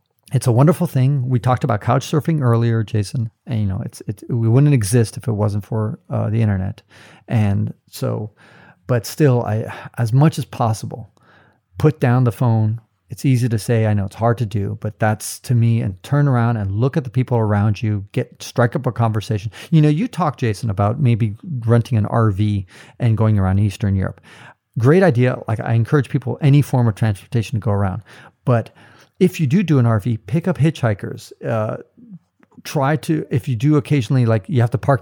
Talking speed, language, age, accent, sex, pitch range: 205 wpm, English, 40-59, American, male, 110-135 Hz